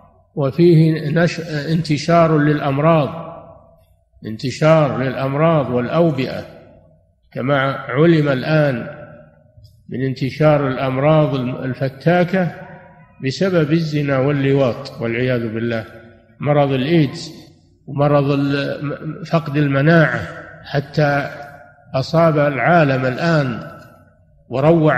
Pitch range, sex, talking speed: 135-165 Hz, male, 70 wpm